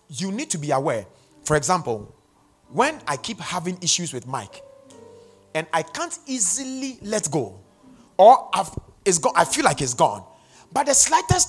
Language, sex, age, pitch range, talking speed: English, male, 30-49, 155-225 Hz, 165 wpm